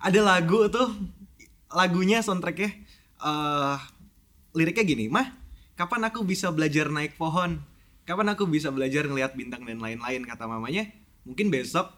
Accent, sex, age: native, male, 20-39